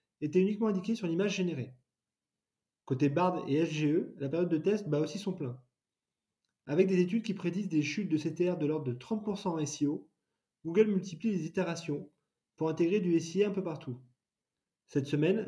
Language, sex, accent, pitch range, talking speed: French, male, French, 150-195 Hz, 180 wpm